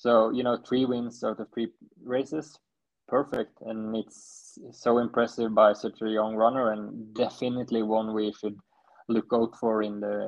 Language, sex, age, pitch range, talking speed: English, male, 20-39, 105-115 Hz, 170 wpm